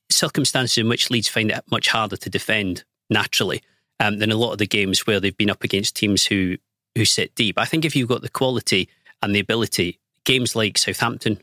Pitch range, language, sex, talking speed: 105-130 Hz, English, male, 215 wpm